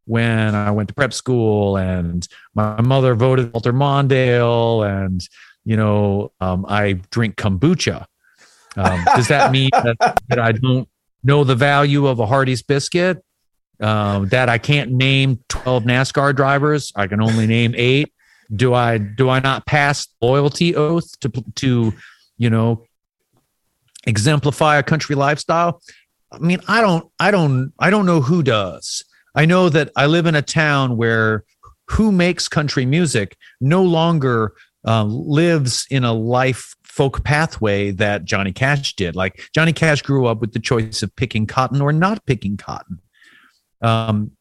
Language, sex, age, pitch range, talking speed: English, male, 40-59, 110-145 Hz, 155 wpm